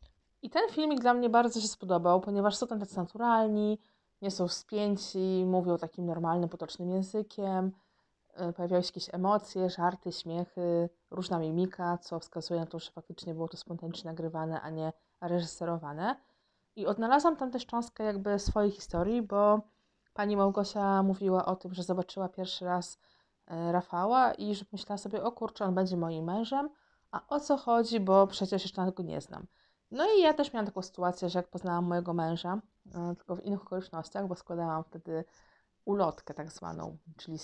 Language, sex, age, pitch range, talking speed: Polish, female, 20-39, 170-205 Hz, 165 wpm